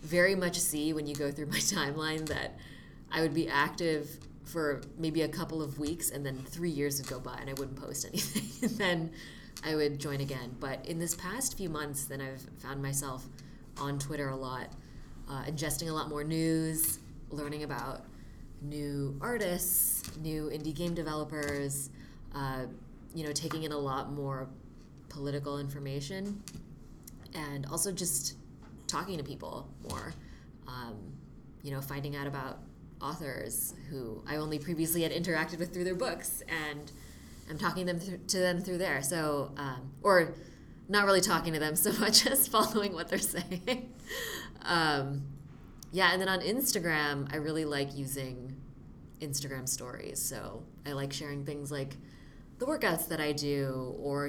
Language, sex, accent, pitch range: English, female, American, 140-165 Hz